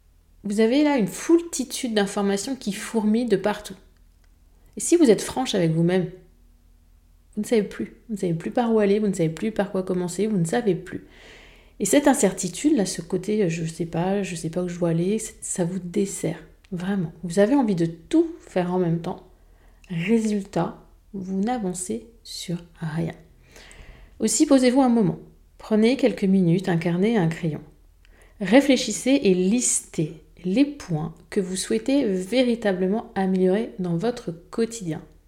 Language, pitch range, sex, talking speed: French, 170-235 Hz, female, 170 wpm